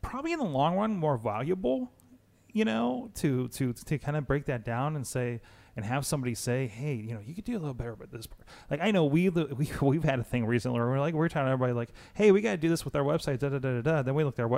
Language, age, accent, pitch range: English, 30-49, American, 110-140 Hz